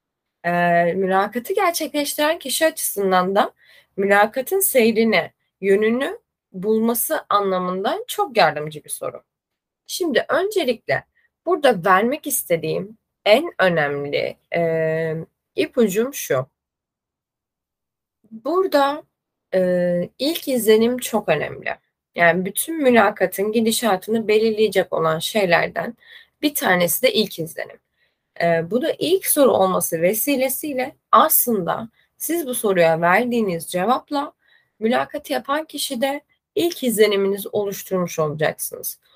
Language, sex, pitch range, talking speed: Turkish, female, 185-295 Hz, 95 wpm